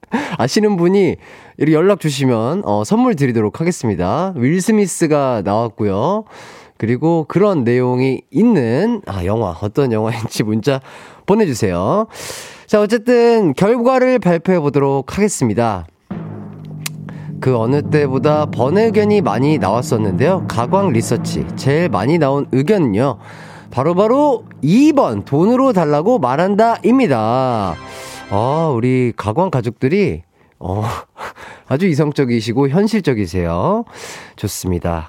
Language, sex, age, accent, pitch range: Korean, male, 30-49, native, 115-180 Hz